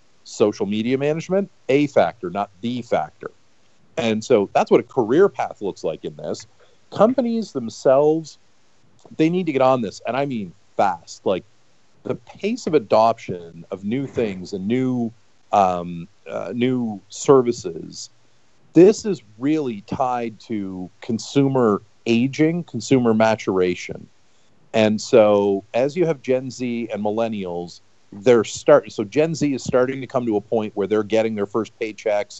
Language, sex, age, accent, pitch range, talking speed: English, male, 40-59, American, 110-145 Hz, 150 wpm